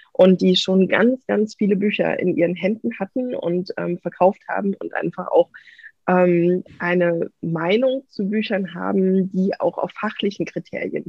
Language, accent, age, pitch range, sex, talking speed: German, German, 20-39, 180-215 Hz, female, 155 wpm